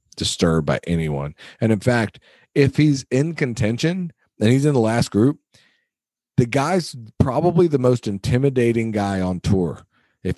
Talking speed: 150 wpm